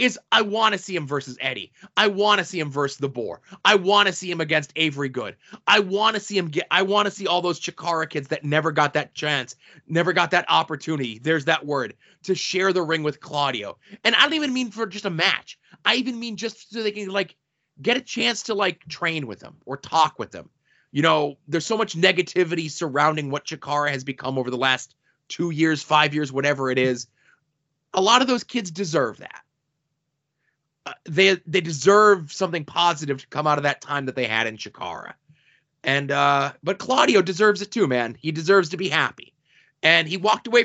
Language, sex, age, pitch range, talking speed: English, male, 20-39, 145-200 Hz, 215 wpm